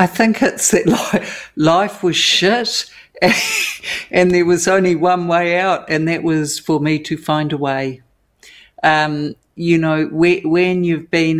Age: 50-69